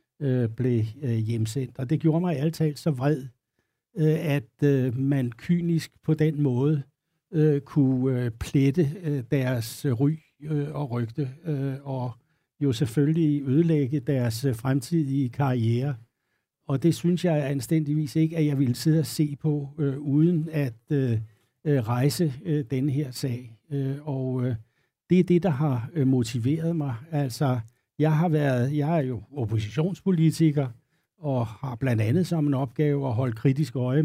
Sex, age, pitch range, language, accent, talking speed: male, 60-79, 130-155 Hz, Danish, native, 160 wpm